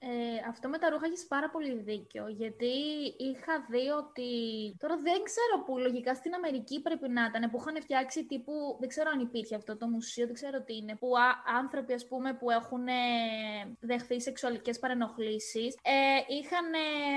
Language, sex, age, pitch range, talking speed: Greek, female, 20-39, 240-300 Hz, 170 wpm